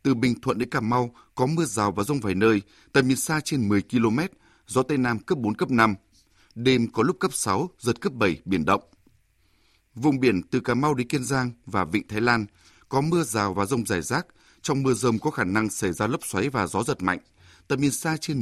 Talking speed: 240 wpm